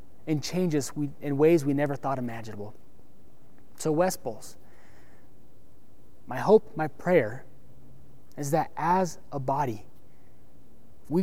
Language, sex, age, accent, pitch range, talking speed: English, male, 20-39, American, 135-175 Hz, 120 wpm